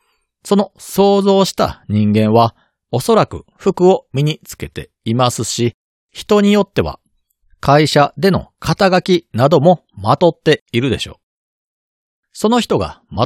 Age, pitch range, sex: 40-59, 115-180 Hz, male